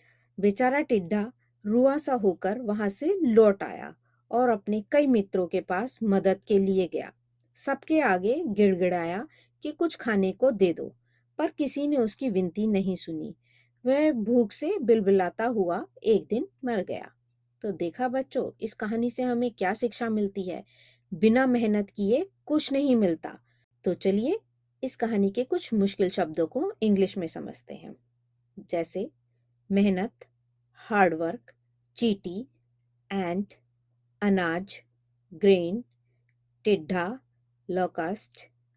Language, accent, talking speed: Hindi, native, 130 wpm